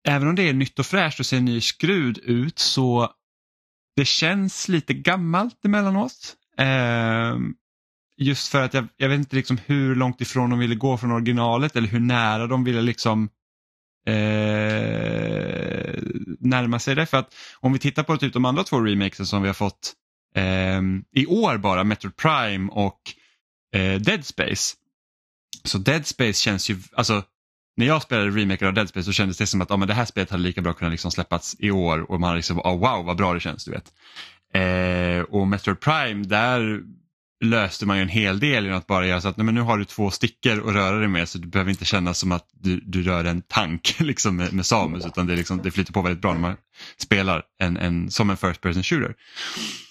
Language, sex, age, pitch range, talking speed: Swedish, male, 10-29, 95-130 Hz, 210 wpm